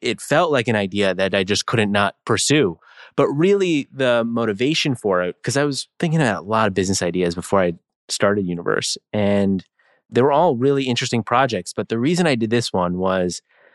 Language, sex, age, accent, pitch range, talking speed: English, male, 30-49, American, 100-135 Hz, 200 wpm